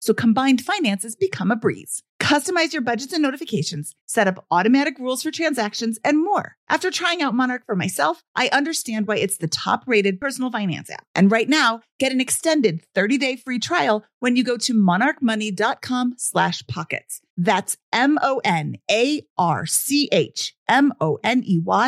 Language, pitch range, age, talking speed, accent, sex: English, 200-285 Hz, 40-59, 140 wpm, American, female